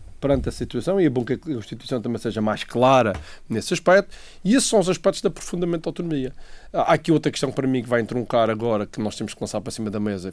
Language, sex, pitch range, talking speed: Portuguese, male, 115-160 Hz, 245 wpm